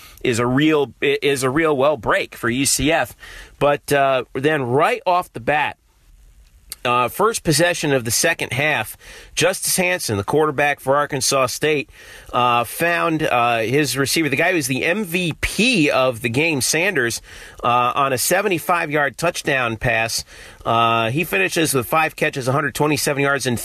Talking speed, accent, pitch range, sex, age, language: 155 wpm, American, 120-160 Hz, male, 40-59, English